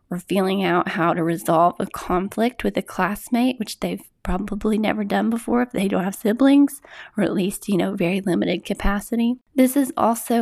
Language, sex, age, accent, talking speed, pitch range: English, female, 20-39, American, 190 wpm, 180-240 Hz